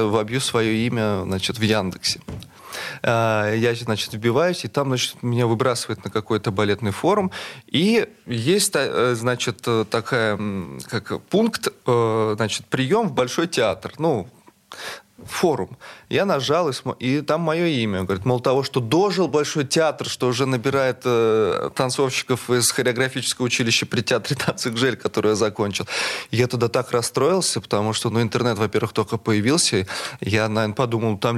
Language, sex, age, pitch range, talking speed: Russian, male, 30-49, 110-135 Hz, 145 wpm